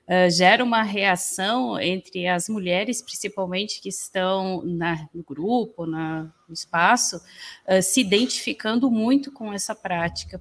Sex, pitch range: female, 185-230 Hz